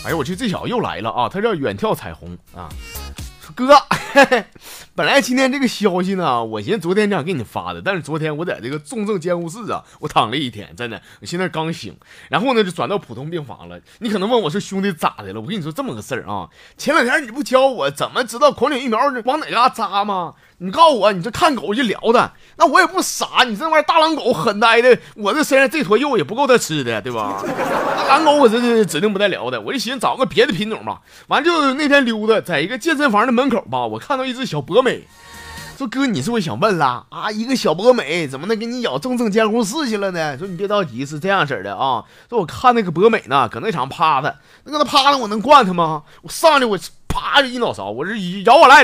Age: 30-49